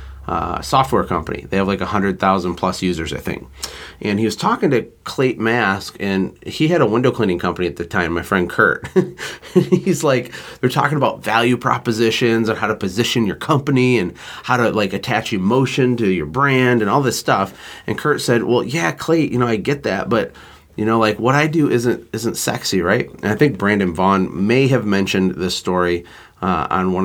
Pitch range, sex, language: 95-135 Hz, male, English